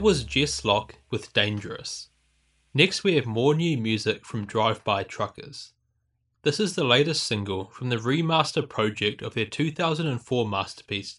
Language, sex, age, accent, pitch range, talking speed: English, male, 20-39, Australian, 105-150 Hz, 150 wpm